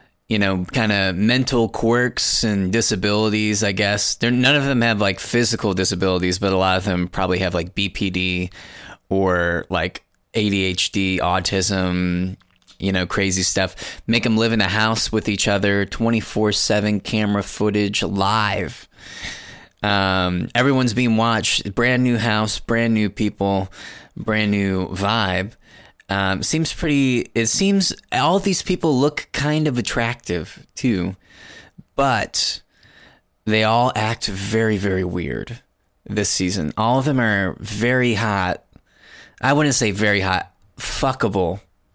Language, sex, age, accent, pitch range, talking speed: English, male, 20-39, American, 95-120 Hz, 135 wpm